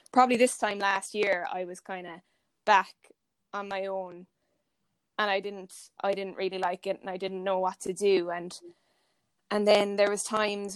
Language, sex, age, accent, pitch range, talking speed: English, female, 20-39, Irish, 180-200 Hz, 190 wpm